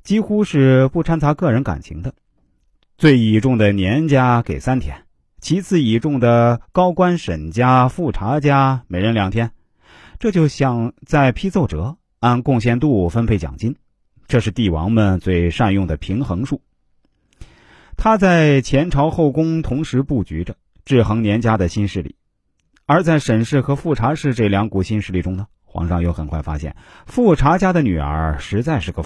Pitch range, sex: 95-145 Hz, male